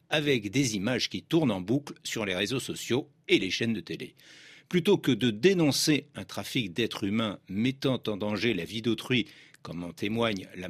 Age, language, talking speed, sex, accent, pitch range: 50-69, French, 190 wpm, male, French, 105-155 Hz